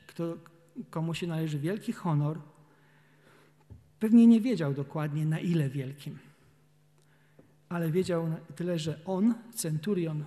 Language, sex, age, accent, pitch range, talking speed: Polish, male, 40-59, native, 150-175 Hz, 110 wpm